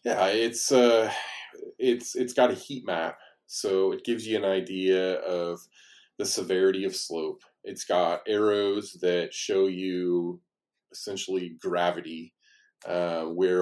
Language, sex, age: English, male, 20-39